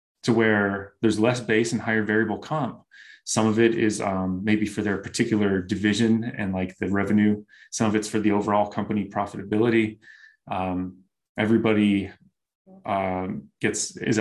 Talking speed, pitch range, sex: 150 wpm, 100-110 Hz, male